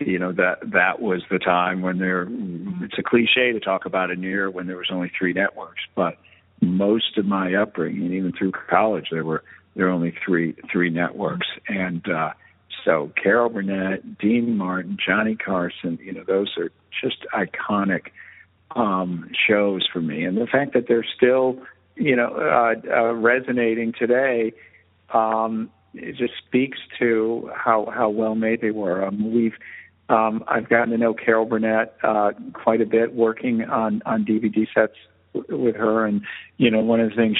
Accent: American